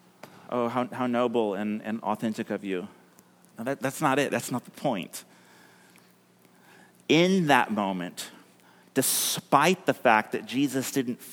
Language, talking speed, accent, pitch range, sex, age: English, 130 wpm, American, 110-145 Hz, male, 30-49